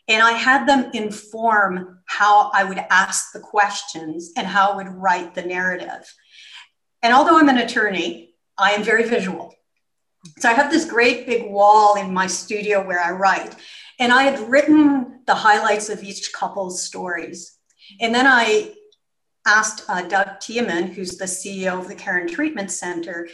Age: 50-69